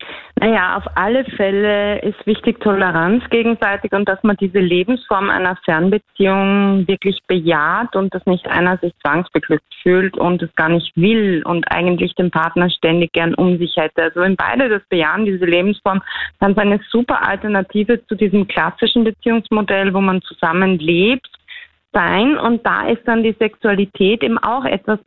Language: German